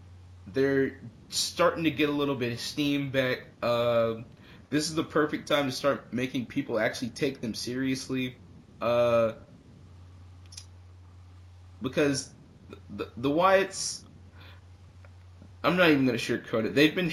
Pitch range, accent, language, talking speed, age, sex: 105-135 Hz, American, English, 140 wpm, 20-39, male